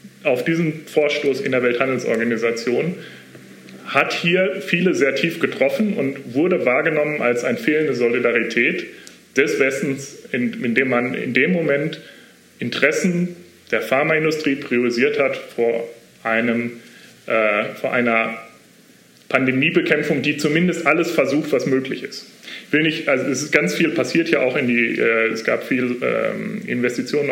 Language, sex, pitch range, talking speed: German, male, 120-175 Hz, 140 wpm